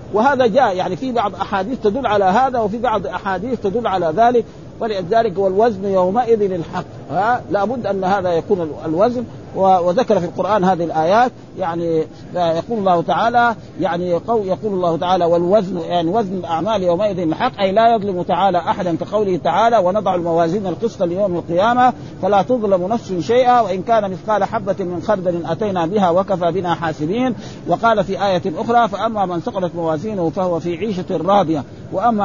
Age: 50-69